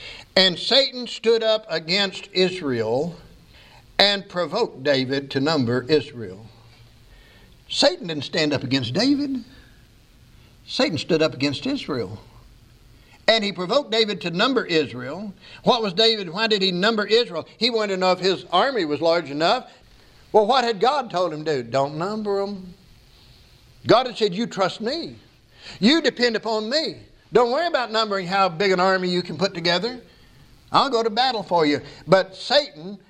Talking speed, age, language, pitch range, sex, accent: 160 wpm, 60-79, English, 175-230 Hz, male, American